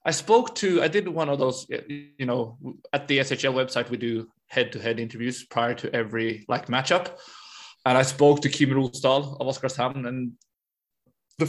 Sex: male